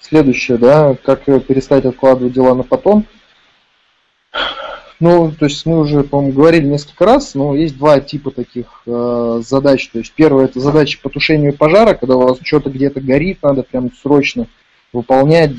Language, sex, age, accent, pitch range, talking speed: Russian, male, 20-39, native, 120-145 Hz, 160 wpm